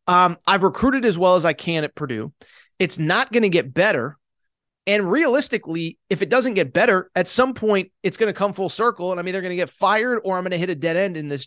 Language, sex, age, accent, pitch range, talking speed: English, male, 30-49, American, 175-230 Hz, 255 wpm